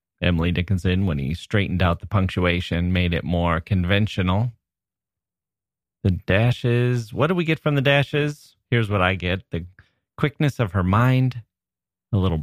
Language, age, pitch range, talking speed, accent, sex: English, 30-49, 90-115 Hz, 155 wpm, American, male